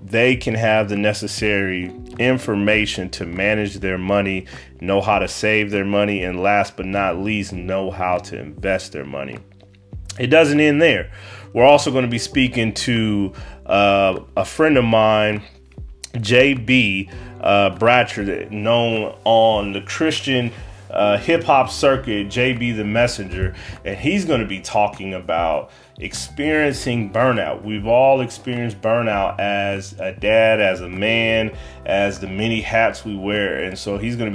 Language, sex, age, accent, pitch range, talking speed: English, male, 30-49, American, 95-115 Hz, 150 wpm